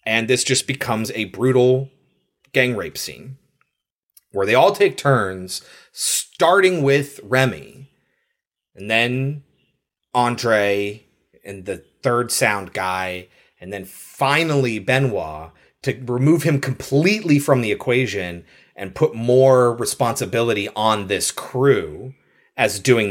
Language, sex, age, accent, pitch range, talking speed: English, male, 30-49, American, 100-135 Hz, 115 wpm